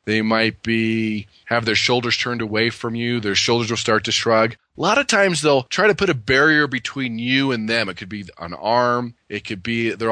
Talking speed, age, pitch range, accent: 230 wpm, 30-49, 110-130 Hz, American